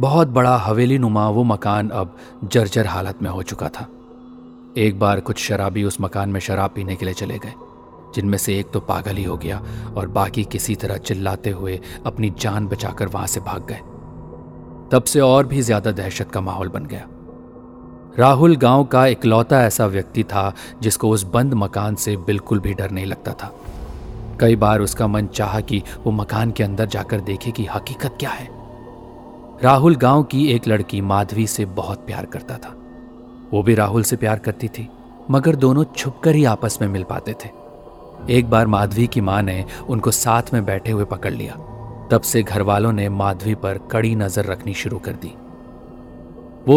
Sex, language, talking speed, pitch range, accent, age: male, Hindi, 185 wpm, 100-120 Hz, native, 40-59